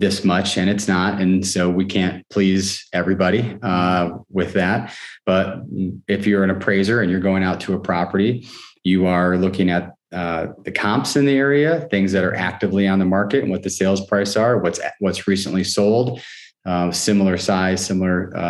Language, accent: English, American